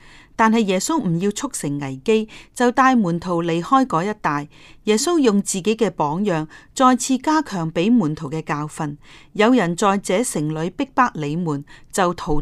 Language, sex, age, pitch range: Chinese, female, 30-49, 155-245 Hz